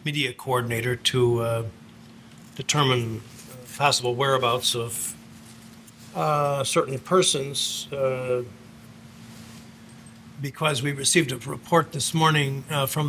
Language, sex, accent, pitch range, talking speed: English, male, American, 125-145 Hz, 95 wpm